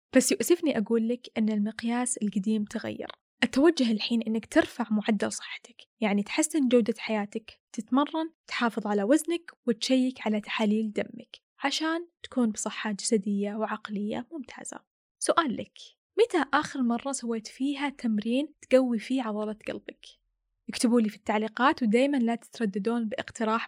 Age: 10-29